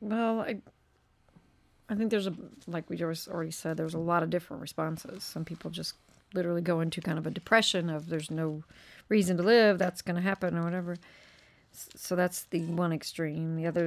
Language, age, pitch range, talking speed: English, 40-59, 160-195 Hz, 200 wpm